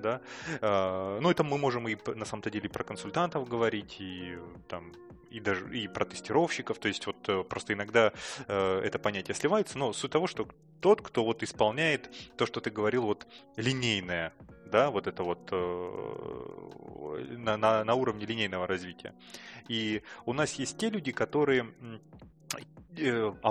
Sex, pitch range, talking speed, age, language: male, 95-120 Hz, 130 wpm, 20-39, Russian